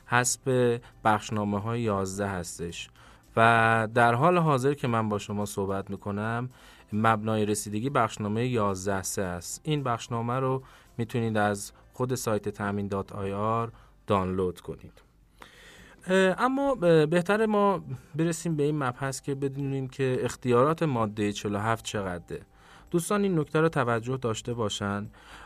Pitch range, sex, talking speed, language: 100-130 Hz, male, 125 wpm, Persian